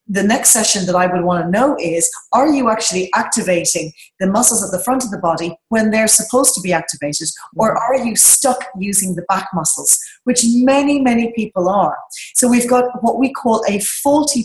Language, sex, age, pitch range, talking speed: English, female, 30-49, 185-250 Hz, 205 wpm